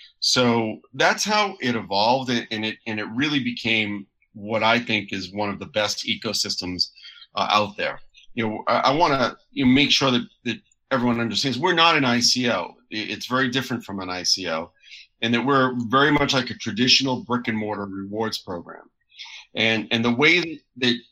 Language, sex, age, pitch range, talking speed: English, male, 40-59, 105-125 Hz, 180 wpm